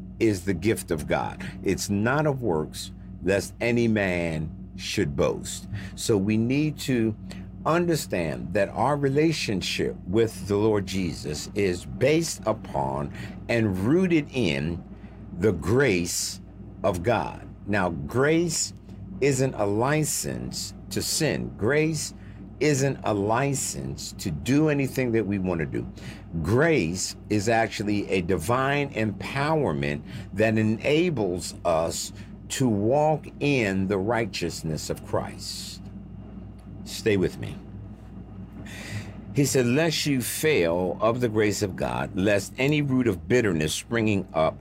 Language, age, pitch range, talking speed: English, 50-69, 95-120 Hz, 120 wpm